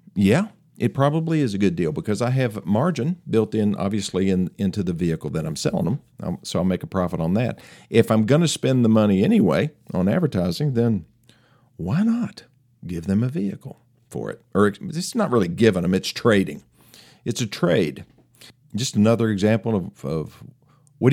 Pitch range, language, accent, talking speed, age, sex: 100-130 Hz, English, American, 180 wpm, 50-69, male